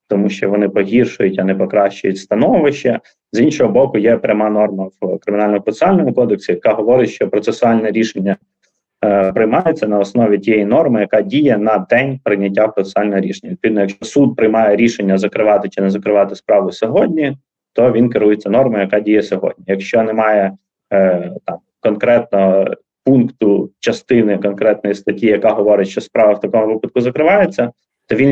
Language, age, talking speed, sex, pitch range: Ukrainian, 20-39, 155 wpm, male, 100-115 Hz